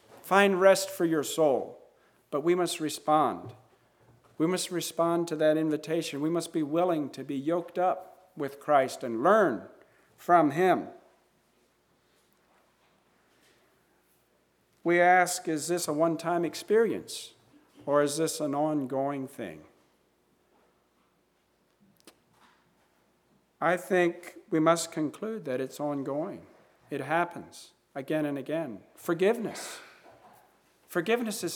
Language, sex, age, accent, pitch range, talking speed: English, male, 50-69, American, 135-170 Hz, 110 wpm